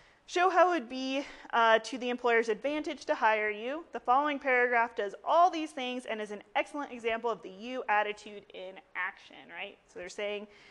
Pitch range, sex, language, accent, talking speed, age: 210-275 Hz, female, English, American, 195 wpm, 30-49